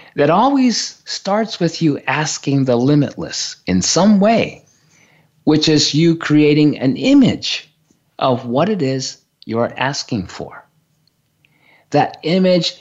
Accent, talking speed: American, 120 wpm